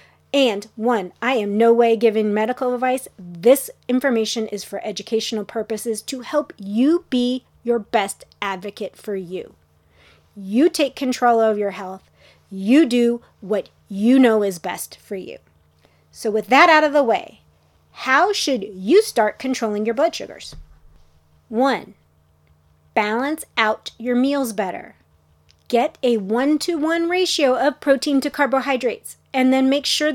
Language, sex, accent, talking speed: English, female, American, 145 wpm